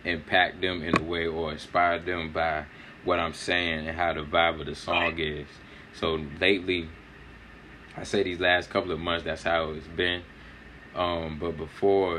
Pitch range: 80-90 Hz